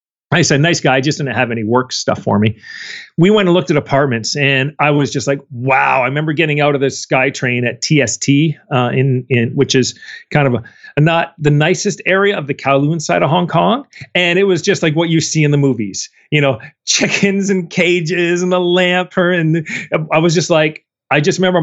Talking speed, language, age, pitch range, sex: 225 wpm, English, 40-59, 130-175 Hz, male